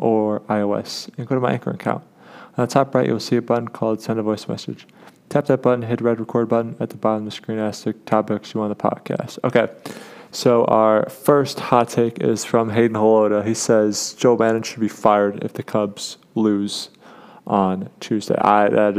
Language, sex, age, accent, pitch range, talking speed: English, male, 20-39, American, 105-115 Hz, 210 wpm